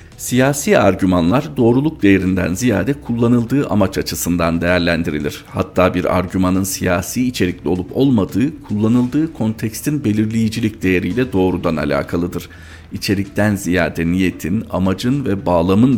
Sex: male